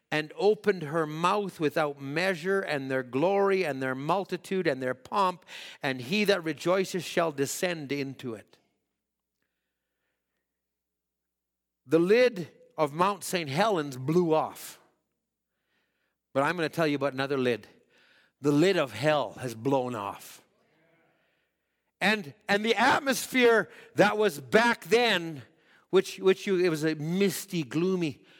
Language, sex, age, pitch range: English, male, 60-79, 155-230 Hz